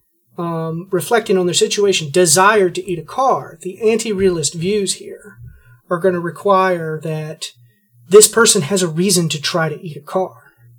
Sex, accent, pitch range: male, American, 150-200 Hz